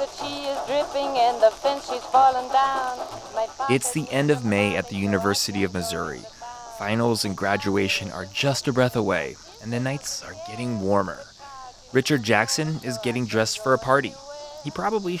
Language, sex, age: English, male, 20-39